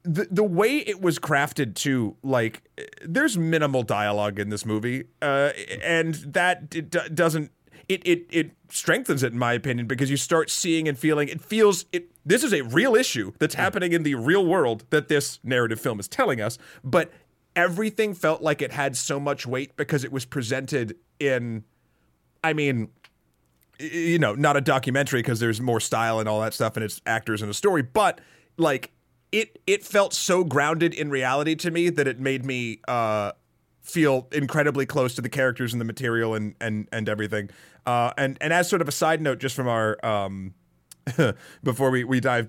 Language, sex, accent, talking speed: English, male, American, 190 wpm